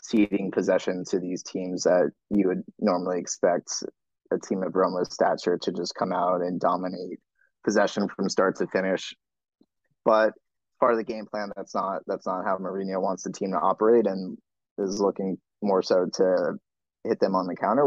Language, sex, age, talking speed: English, male, 20-39, 180 wpm